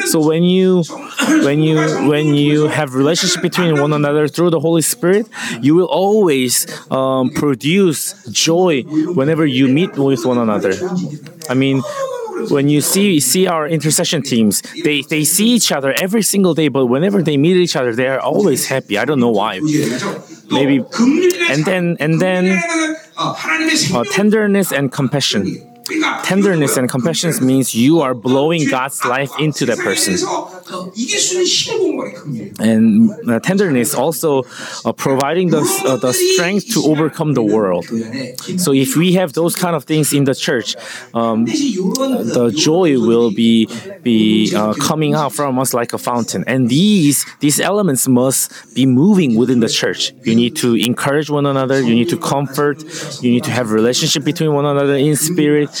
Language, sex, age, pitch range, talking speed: English, male, 20-39, 130-185 Hz, 160 wpm